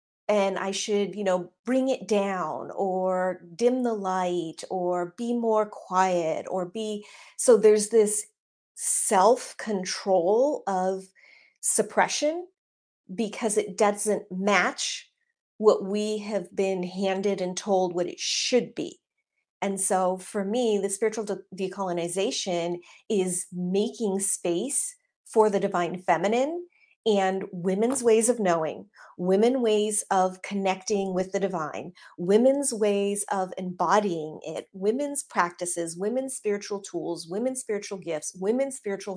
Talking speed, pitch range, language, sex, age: 125 wpm, 185-215 Hz, English, female, 40-59